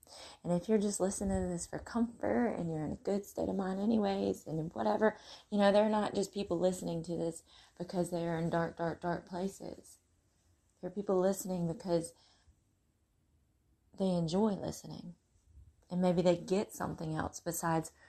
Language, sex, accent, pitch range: English, female, American, 145-185 Hz